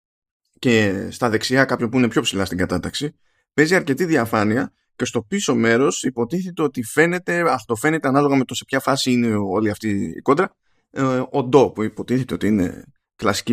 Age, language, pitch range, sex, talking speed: 20-39, Greek, 110-145 Hz, male, 175 wpm